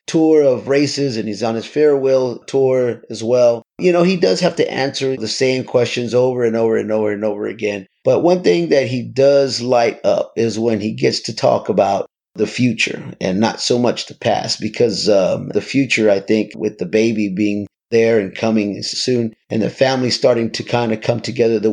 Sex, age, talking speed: male, 30-49, 210 wpm